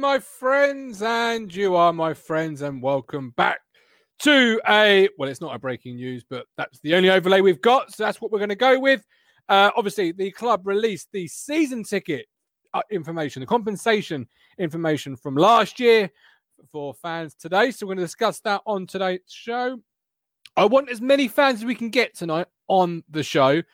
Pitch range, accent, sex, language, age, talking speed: 160-225 Hz, British, male, English, 30-49, 185 wpm